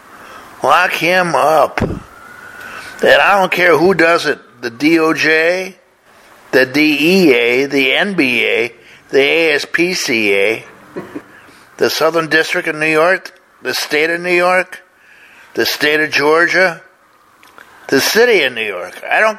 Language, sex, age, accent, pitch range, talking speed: English, male, 60-79, American, 170-275 Hz, 125 wpm